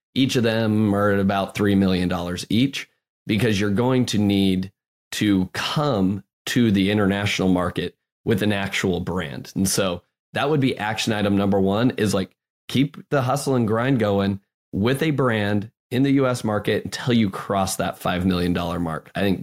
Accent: American